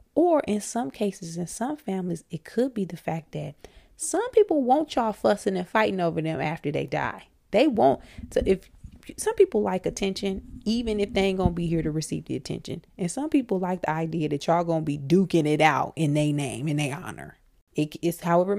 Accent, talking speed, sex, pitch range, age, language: American, 220 wpm, female, 165-230 Hz, 30-49, English